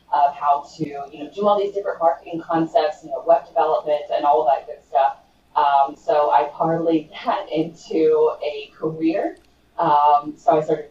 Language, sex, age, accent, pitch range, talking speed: English, female, 20-39, American, 150-215 Hz, 175 wpm